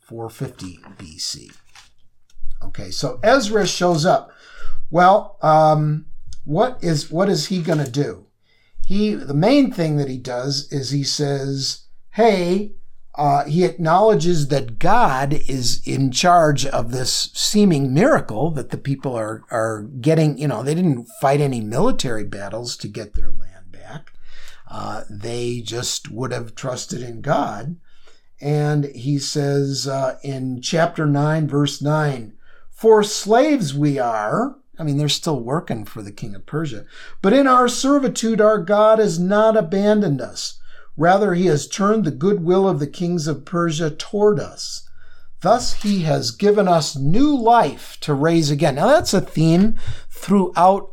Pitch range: 135-195 Hz